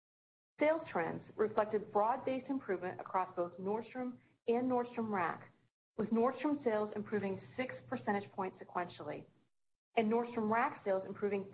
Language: English